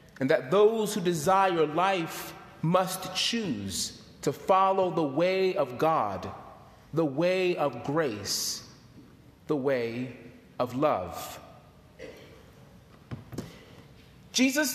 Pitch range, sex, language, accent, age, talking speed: 165-210 Hz, male, English, American, 30-49, 95 wpm